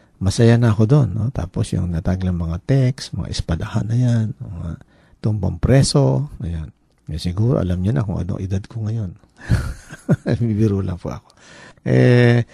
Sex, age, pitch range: male, 50-69, 90-120 Hz